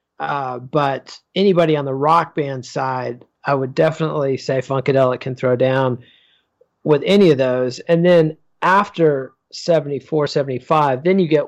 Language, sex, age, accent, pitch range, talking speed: English, male, 40-59, American, 135-160 Hz, 145 wpm